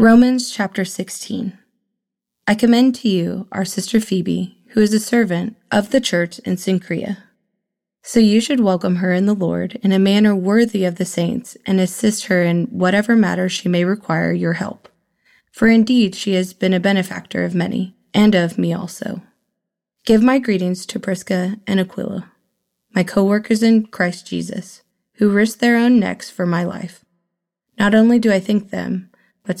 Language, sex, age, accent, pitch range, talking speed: English, female, 20-39, American, 185-220 Hz, 170 wpm